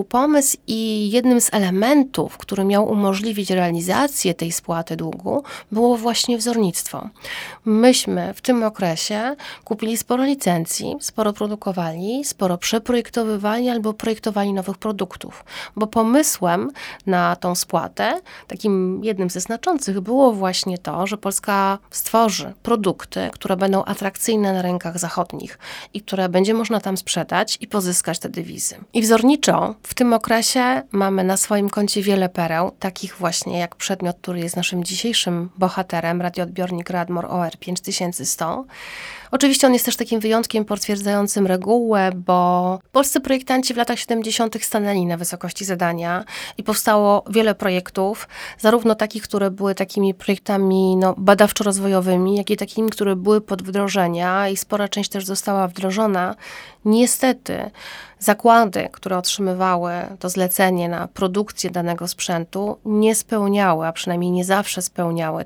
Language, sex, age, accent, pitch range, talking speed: Polish, female, 30-49, native, 180-225 Hz, 135 wpm